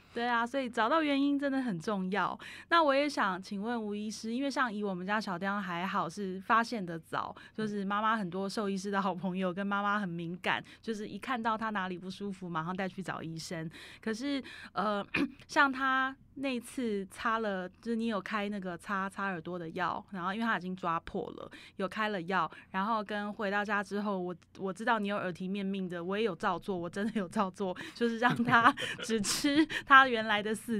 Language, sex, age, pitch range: Chinese, female, 20-39, 185-225 Hz